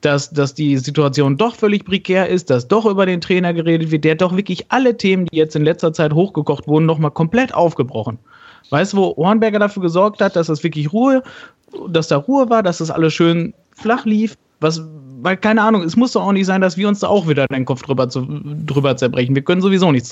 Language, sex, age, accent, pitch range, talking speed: German, male, 30-49, German, 140-175 Hz, 225 wpm